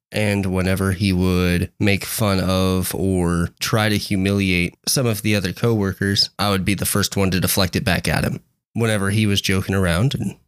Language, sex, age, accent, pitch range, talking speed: English, male, 20-39, American, 95-115 Hz, 195 wpm